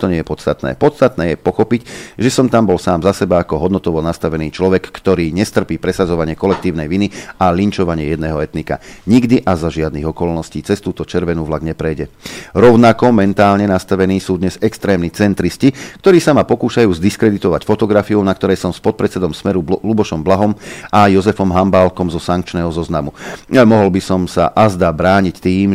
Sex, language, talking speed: male, Slovak, 170 wpm